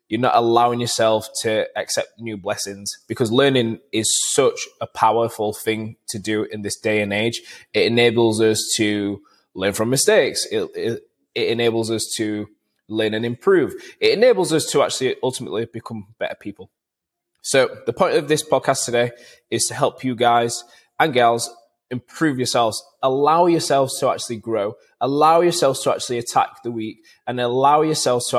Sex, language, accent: male, English, British